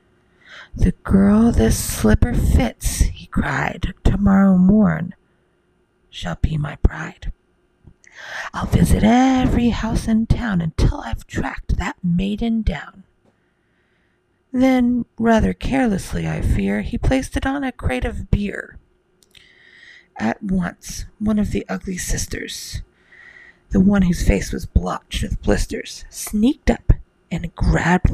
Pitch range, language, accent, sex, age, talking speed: 160-230 Hz, English, American, female, 40-59, 120 wpm